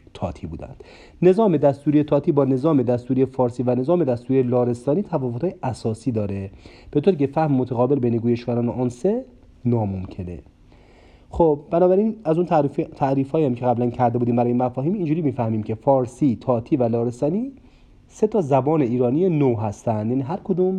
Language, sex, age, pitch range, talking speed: Persian, male, 40-59, 120-160 Hz, 155 wpm